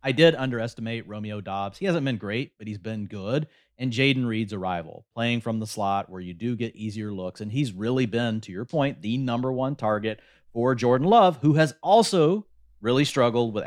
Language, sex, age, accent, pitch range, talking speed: English, male, 30-49, American, 100-130 Hz, 205 wpm